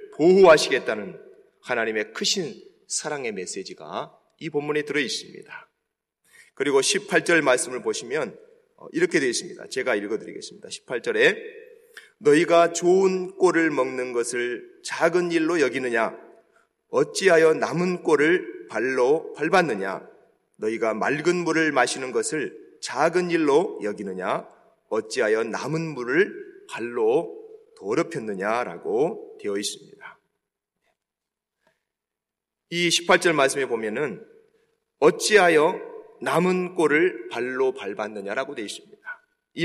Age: 30-49